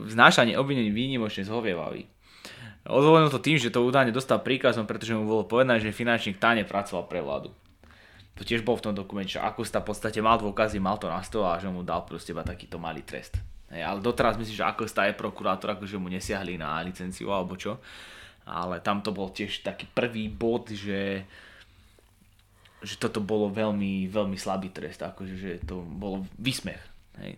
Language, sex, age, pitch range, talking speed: English, male, 20-39, 95-120 Hz, 180 wpm